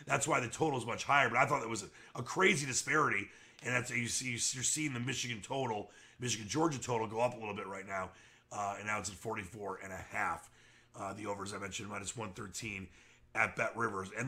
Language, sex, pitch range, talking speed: English, male, 115-145 Hz, 225 wpm